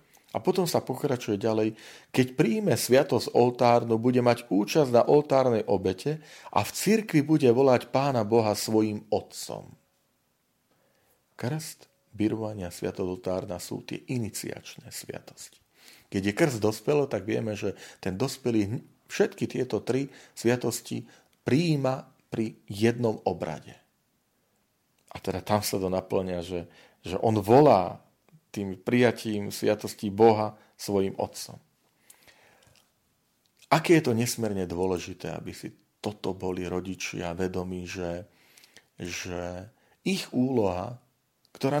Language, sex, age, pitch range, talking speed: Slovak, male, 40-59, 95-130 Hz, 115 wpm